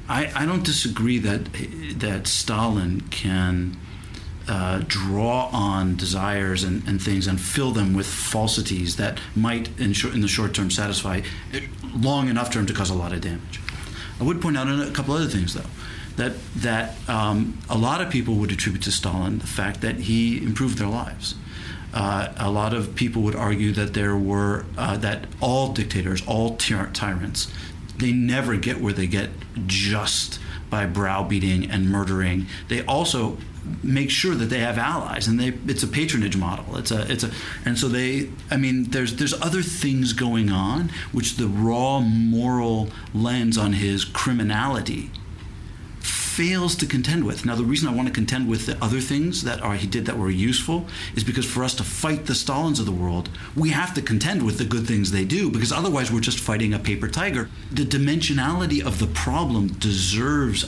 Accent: American